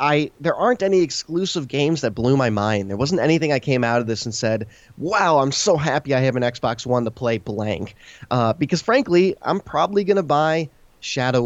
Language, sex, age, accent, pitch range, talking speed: English, male, 20-39, American, 115-155 Hz, 210 wpm